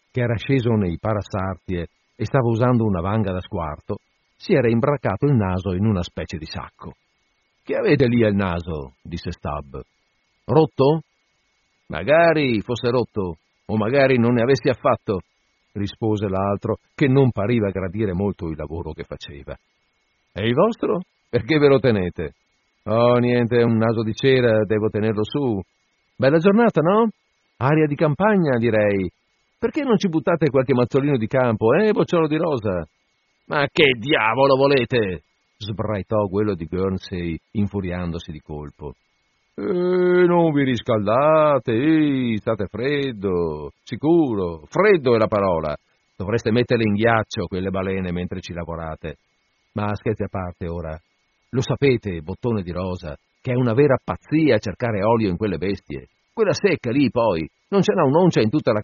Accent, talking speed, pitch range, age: native, 150 wpm, 95-135 Hz, 50-69